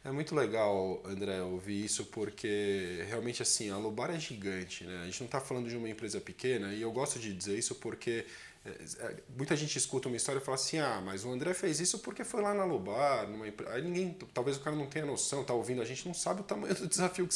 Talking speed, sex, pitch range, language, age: 235 wpm, male, 105-160 Hz, Portuguese, 20-39